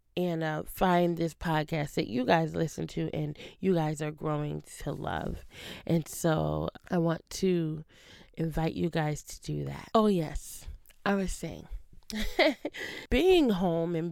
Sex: female